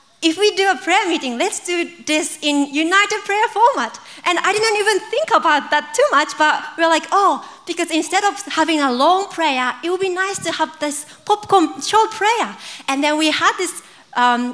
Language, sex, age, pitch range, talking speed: English, female, 30-49, 270-345 Hz, 200 wpm